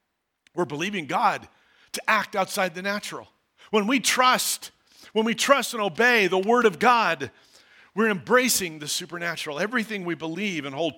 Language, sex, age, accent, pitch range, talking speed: English, male, 50-69, American, 140-185 Hz, 160 wpm